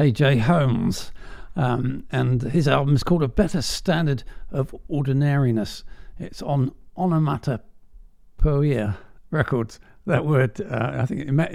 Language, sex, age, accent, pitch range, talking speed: English, male, 50-69, British, 120-155 Hz, 120 wpm